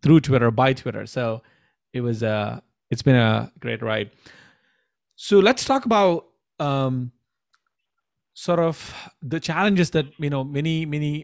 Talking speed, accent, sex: 150 wpm, Indian, male